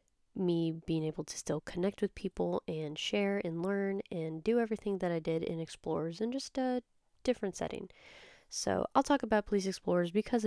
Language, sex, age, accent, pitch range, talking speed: English, female, 10-29, American, 165-220 Hz, 185 wpm